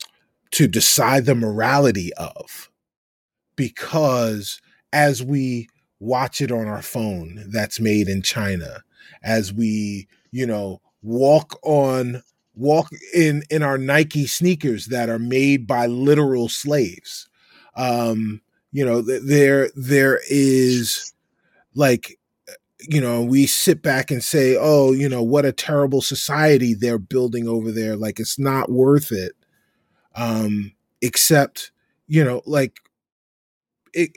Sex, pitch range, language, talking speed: male, 120-160 Hz, English, 125 wpm